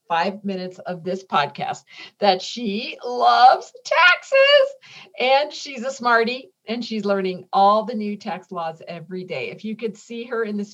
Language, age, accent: English, 50-69, American